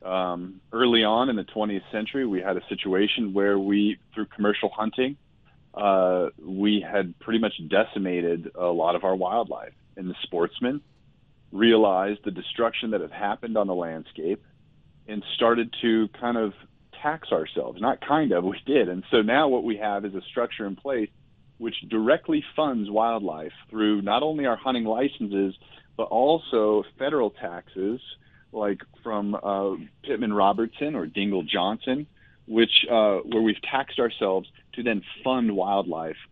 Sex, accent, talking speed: male, American, 155 wpm